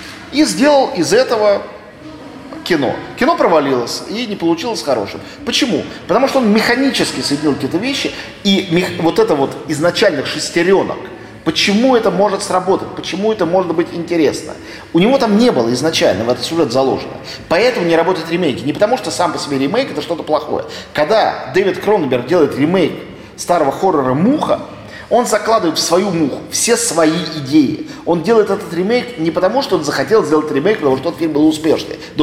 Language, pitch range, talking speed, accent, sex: Russian, 155-215 Hz, 170 wpm, native, male